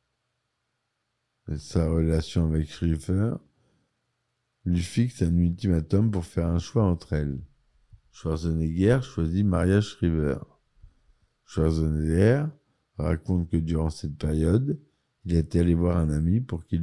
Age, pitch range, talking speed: 50-69, 80-110 Hz, 115 wpm